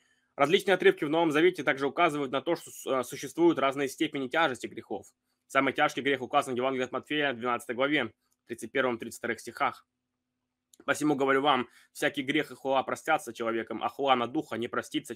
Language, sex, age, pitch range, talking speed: Russian, male, 20-39, 125-145 Hz, 170 wpm